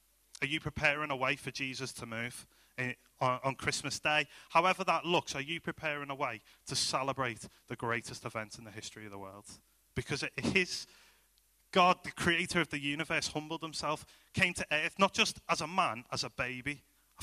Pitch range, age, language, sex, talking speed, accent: 125-155 Hz, 30-49, English, male, 195 wpm, British